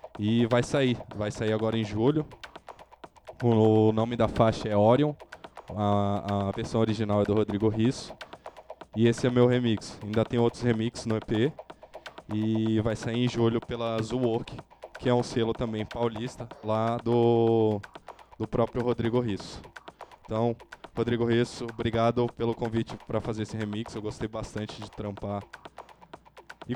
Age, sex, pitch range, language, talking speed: 10-29, male, 110-120 Hz, English, 150 wpm